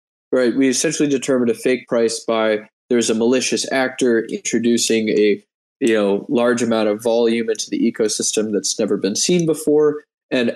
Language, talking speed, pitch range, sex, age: English, 165 wpm, 110-130 Hz, male, 20-39